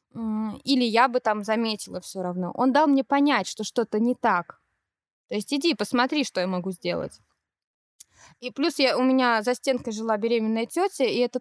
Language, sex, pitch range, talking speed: Russian, female, 210-255 Hz, 185 wpm